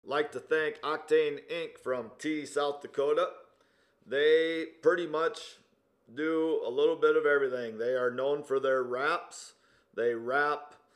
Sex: male